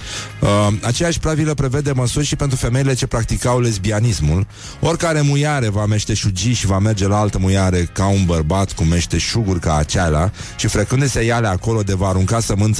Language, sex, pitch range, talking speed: Romanian, male, 90-120 Hz, 180 wpm